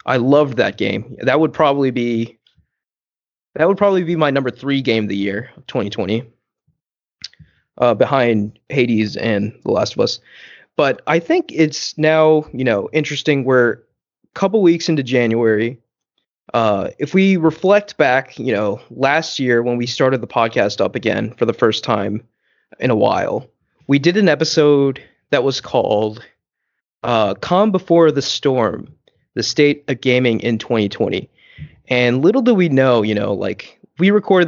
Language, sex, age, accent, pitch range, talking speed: English, male, 20-39, American, 115-155 Hz, 160 wpm